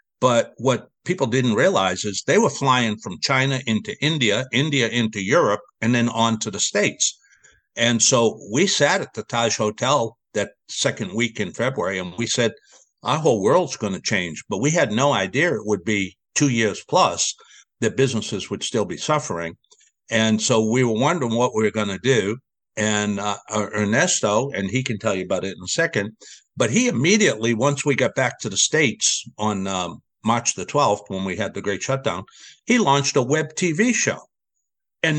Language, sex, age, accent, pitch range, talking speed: English, male, 60-79, American, 110-145 Hz, 195 wpm